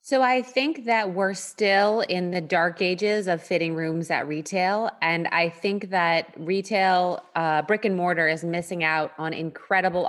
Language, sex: English, female